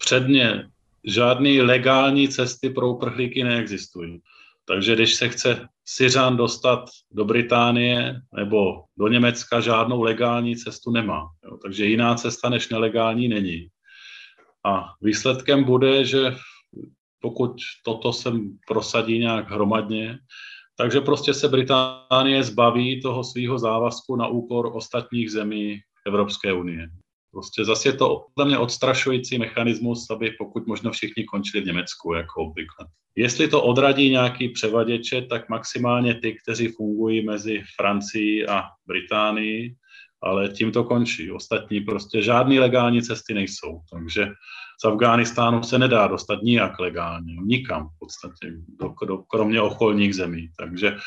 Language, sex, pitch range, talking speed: Czech, male, 105-120 Hz, 130 wpm